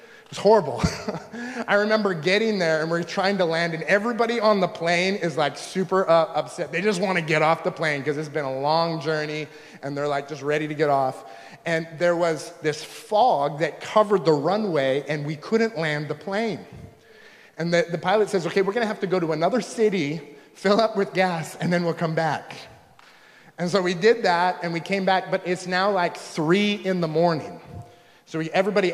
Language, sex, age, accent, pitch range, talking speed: English, male, 30-49, American, 155-190 Hz, 205 wpm